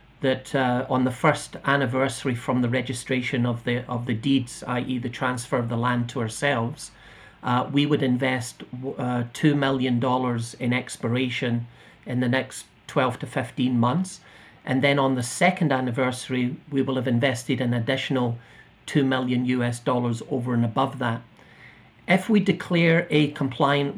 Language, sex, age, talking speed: English, male, 40-59, 160 wpm